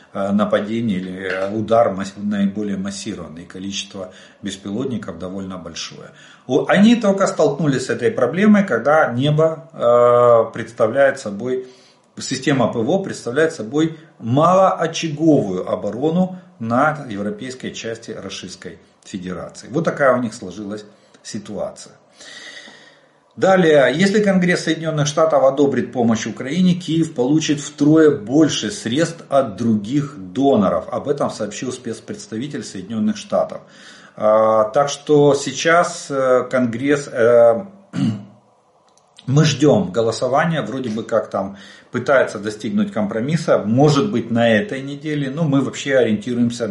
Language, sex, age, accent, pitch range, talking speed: Russian, male, 40-59, native, 110-160 Hz, 105 wpm